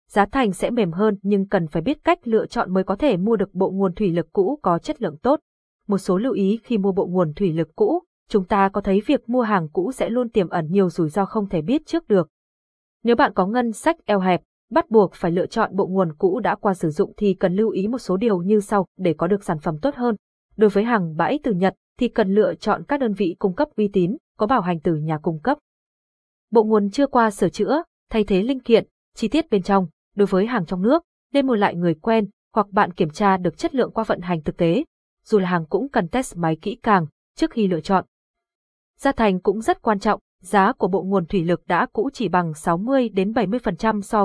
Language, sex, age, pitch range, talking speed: Vietnamese, female, 20-39, 185-235 Hz, 250 wpm